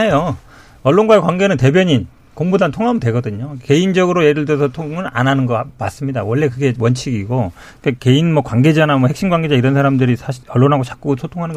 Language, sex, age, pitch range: Korean, male, 40-59, 120-155 Hz